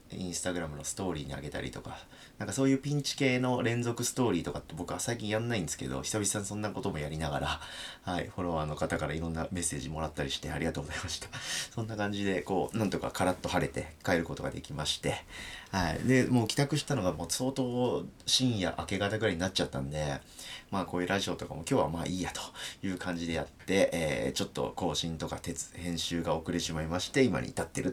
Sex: male